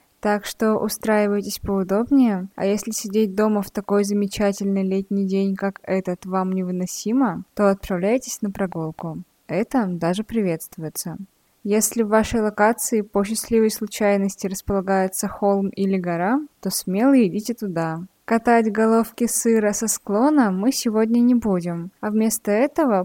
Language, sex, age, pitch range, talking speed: Russian, female, 20-39, 185-220 Hz, 135 wpm